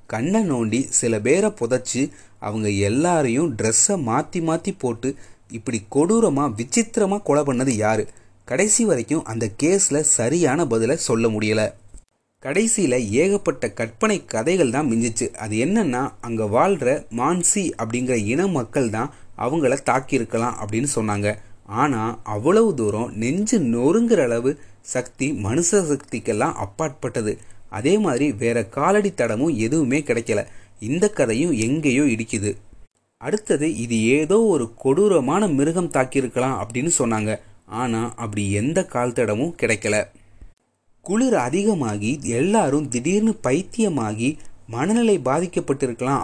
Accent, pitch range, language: native, 110-165 Hz, Tamil